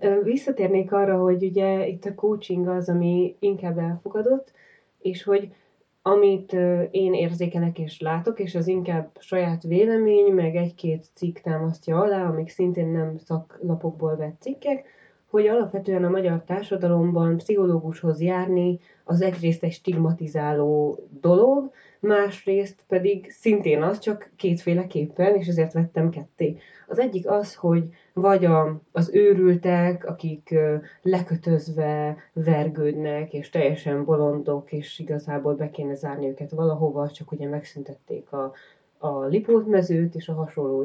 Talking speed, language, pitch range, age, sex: 125 wpm, Hungarian, 160-195 Hz, 20-39, female